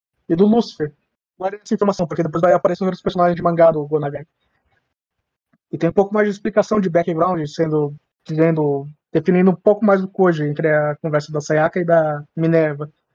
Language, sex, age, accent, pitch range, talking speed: Portuguese, male, 20-39, Brazilian, 165-205 Hz, 190 wpm